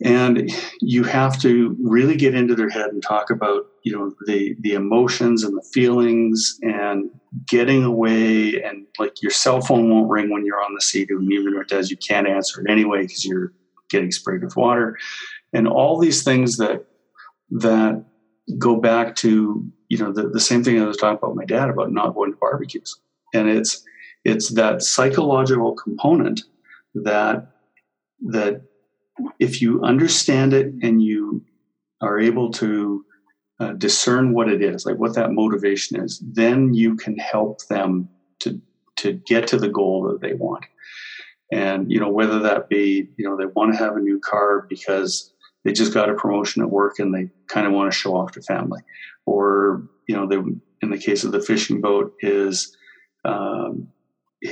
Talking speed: 180 wpm